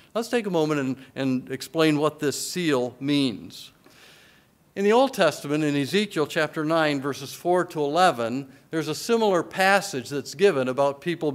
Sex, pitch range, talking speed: male, 145-185 Hz, 165 wpm